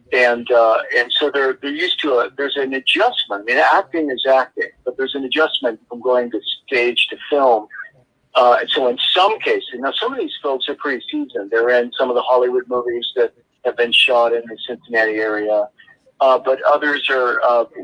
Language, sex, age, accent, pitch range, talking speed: English, male, 50-69, American, 115-155 Hz, 205 wpm